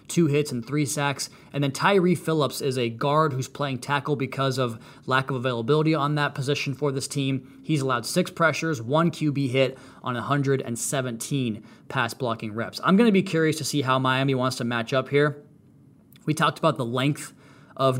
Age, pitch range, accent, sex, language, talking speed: 20-39, 130-150 Hz, American, male, English, 190 wpm